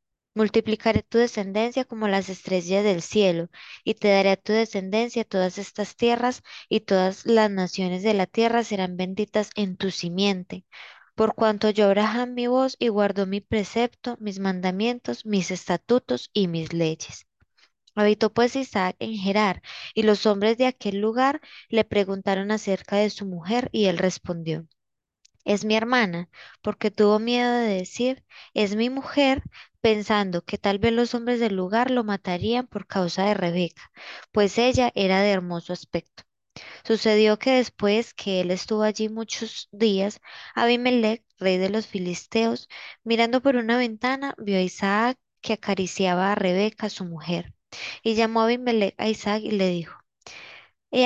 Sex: female